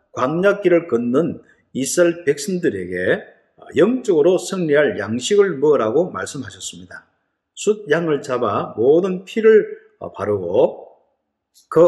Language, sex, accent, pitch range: Korean, male, native, 135-215 Hz